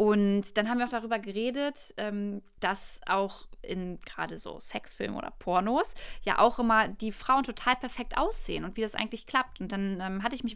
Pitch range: 195-230 Hz